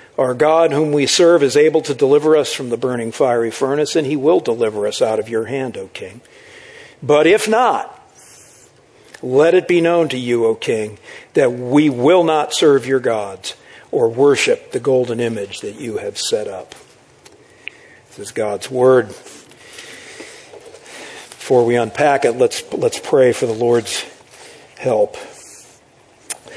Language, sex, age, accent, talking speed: English, male, 50-69, American, 155 wpm